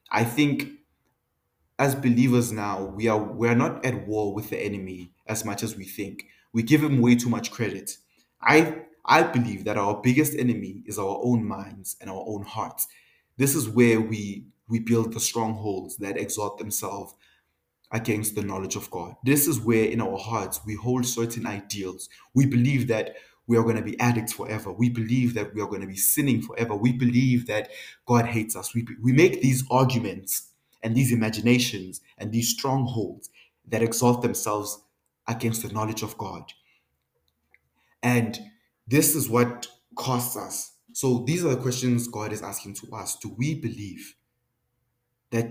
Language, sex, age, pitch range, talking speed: English, male, 20-39, 105-125 Hz, 175 wpm